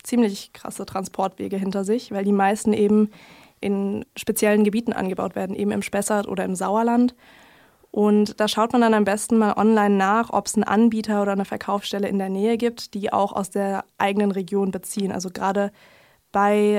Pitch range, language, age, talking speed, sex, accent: 195-215 Hz, German, 20-39, 180 wpm, female, German